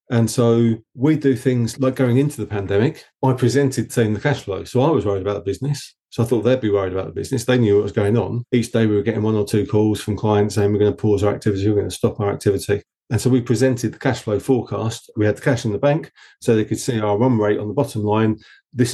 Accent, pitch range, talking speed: British, 105-125 Hz, 285 wpm